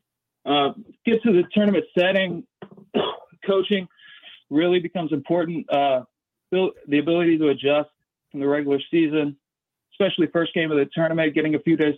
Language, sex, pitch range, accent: English, male, 145-180 Hz, American